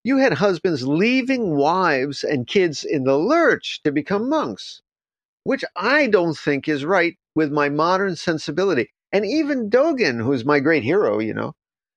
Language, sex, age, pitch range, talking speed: English, male, 50-69, 135-180 Hz, 160 wpm